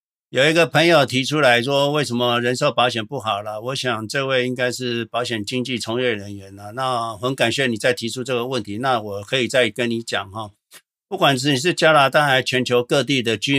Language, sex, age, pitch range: Chinese, male, 50-69, 110-135 Hz